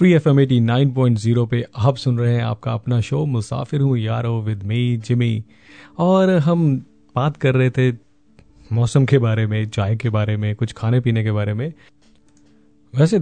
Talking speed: 175 wpm